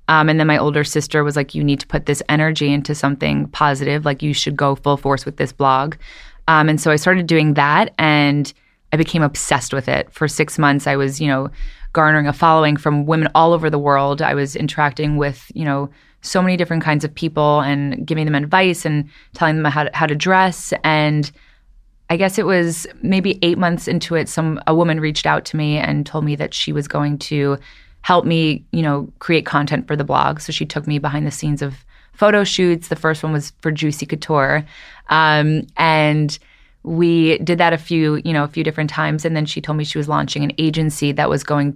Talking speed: 225 wpm